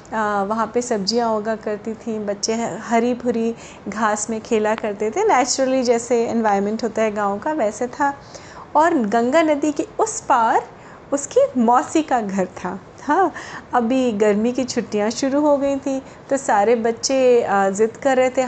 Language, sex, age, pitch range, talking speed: Hindi, female, 30-49, 225-275 Hz, 165 wpm